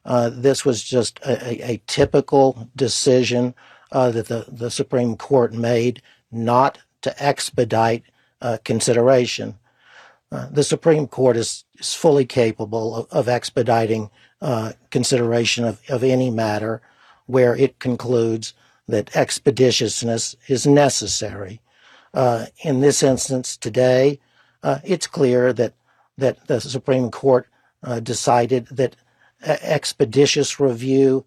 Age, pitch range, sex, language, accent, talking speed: 60-79, 120-135 Hz, male, English, American, 120 wpm